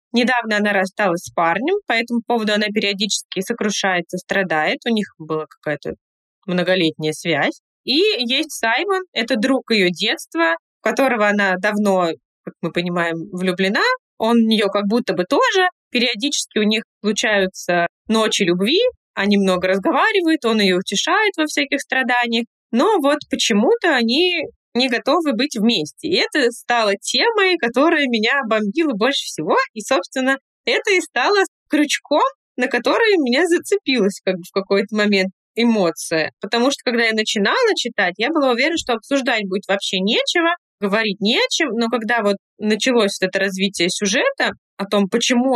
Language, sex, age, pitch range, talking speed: Russian, female, 20-39, 200-280 Hz, 155 wpm